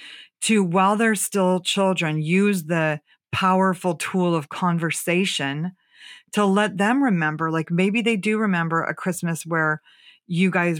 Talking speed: 140 wpm